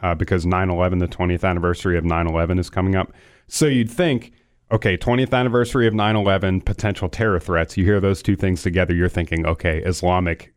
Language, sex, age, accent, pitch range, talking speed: English, male, 30-49, American, 90-105 Hz, 185 wpm